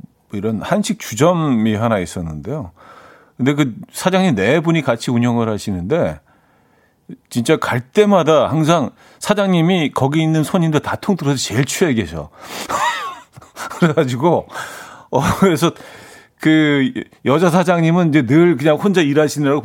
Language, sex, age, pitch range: Korean, male, 40-59, 115-170 Hz